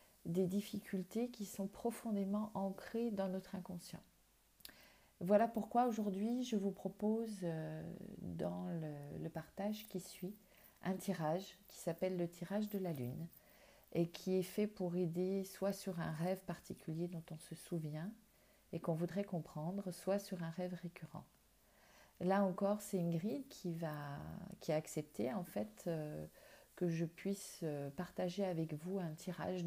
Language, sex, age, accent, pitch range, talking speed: French, female, 40-59, French, 175-200 Hz, 150 wpm